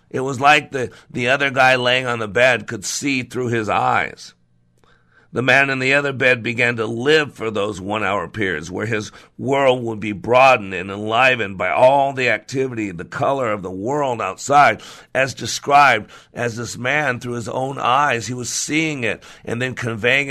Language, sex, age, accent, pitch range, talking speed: English, male, 50-69, American, 100-125 Hz, 185 wpm